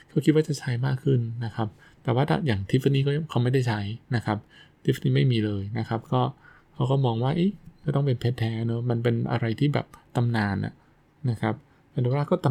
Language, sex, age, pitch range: Thai, male, 20-39, 115-145 Hz